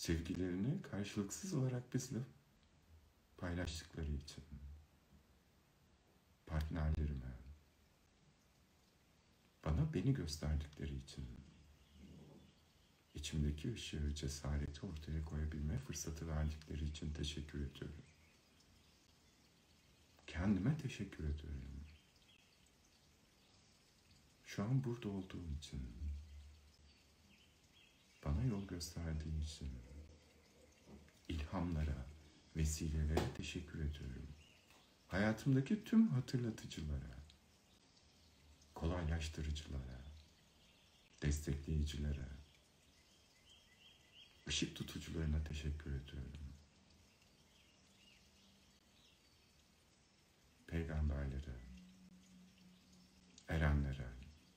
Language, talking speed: Turkish, 55 wpm